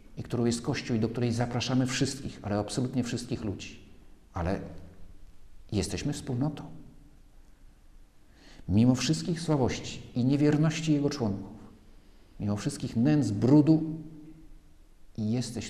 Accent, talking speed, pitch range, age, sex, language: native, 105 wpm, 90-130 Hz, 50-69, male, Polish